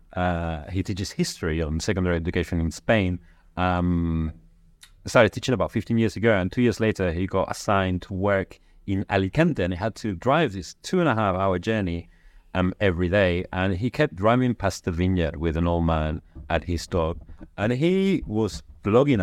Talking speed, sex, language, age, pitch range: 185 wpm, male, English, 30-49, 85-115 Hz